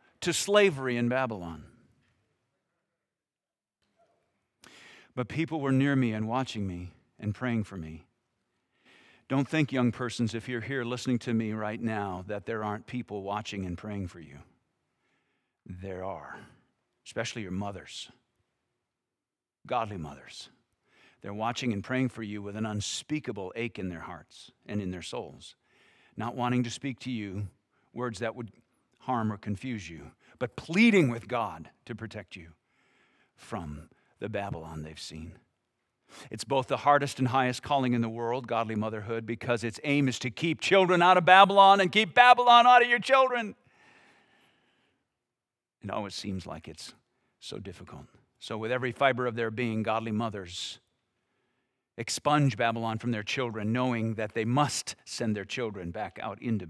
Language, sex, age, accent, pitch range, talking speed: English, male, 50-69, American, 105-130 Hz, 155 wpm